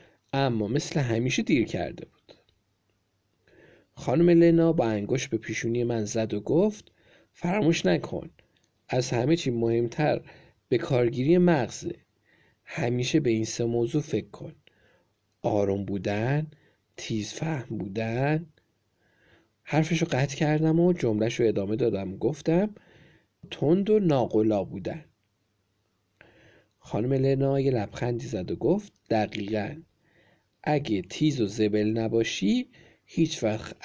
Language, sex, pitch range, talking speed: Persian, male, 105-155 Hz, 110 wpm